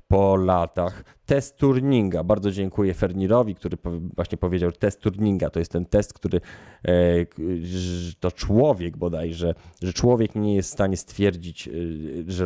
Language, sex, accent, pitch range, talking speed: Polish, male, native, 90-115 Hz, 135 wpm